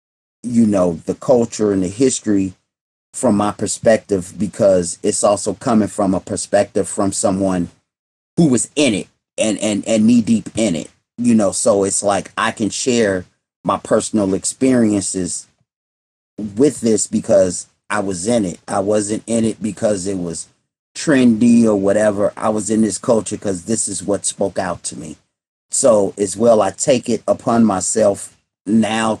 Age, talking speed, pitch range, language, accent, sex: 30-49, 165 wpm, 95-110 Hz, English, American, male